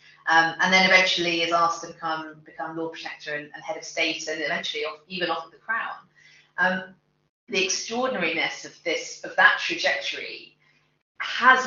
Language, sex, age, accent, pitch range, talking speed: English, female, 30-49, British, 160-210 Hz, 170 wpm